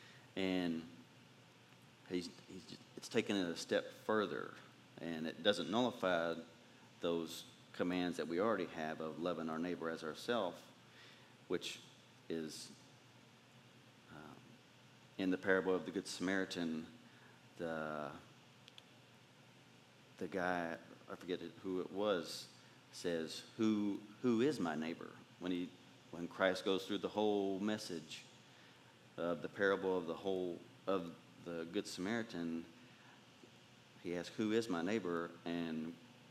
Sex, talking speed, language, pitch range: male, 120 wpm, English, 85-105 Hz